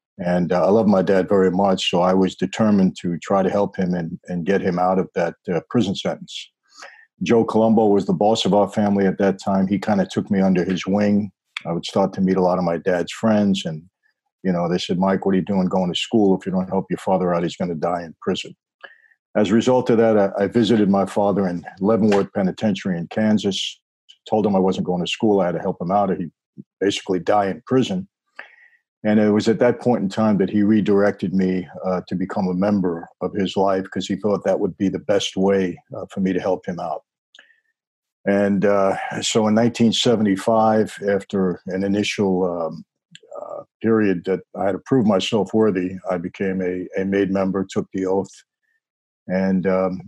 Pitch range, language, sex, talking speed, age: 95-110 Hz, English, male, 215 wpm, 50-69